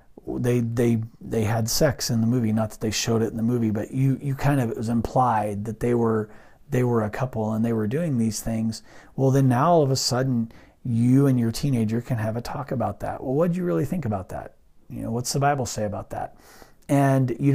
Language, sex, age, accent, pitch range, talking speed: English, male, 40-59, American, 115-140 Hz, 245 wpm